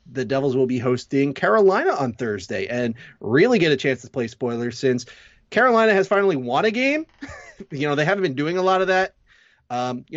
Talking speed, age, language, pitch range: 205 wpm, 30-49, English, 130-190 Hz